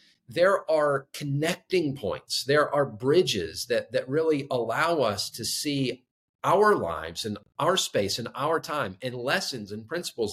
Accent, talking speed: American, 150 wpm